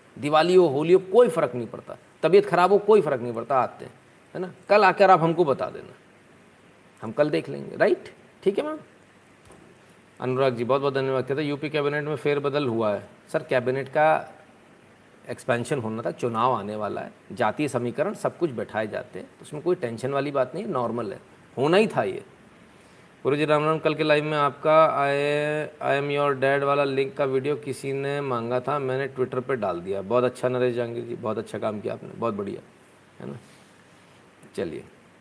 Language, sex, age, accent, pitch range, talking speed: Hindi, male, 40-59, native, 125-155 Hz, 200 wpm